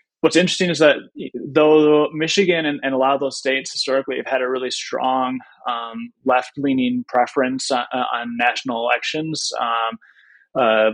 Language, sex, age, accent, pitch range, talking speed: English, male, 20-39, American, 120-145 Hz, 160 wpm